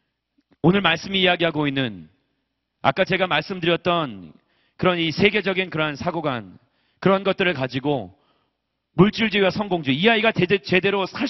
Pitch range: 125-190 Hz